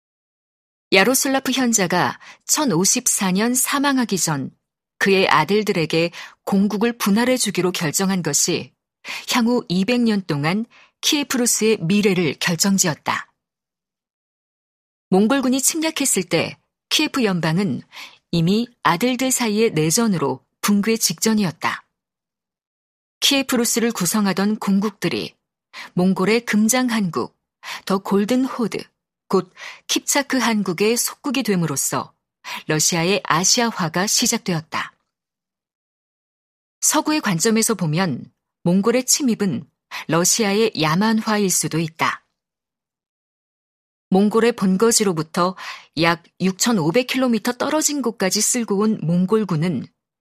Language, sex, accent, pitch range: Korean, female, native, 180-240 Hz